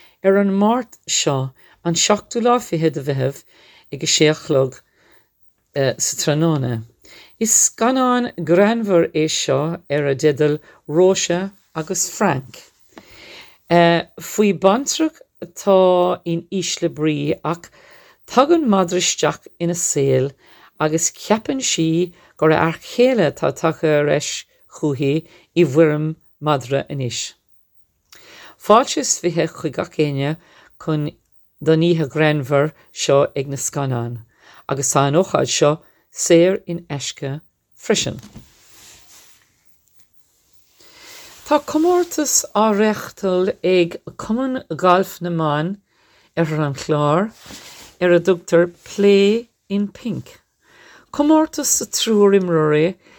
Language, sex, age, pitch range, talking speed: English, female, 50-69, 150-195 Hz, 80 wpm